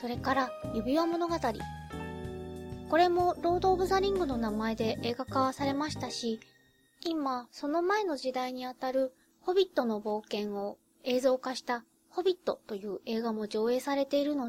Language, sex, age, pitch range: Japanese, female, 20-39, 230-310 Hz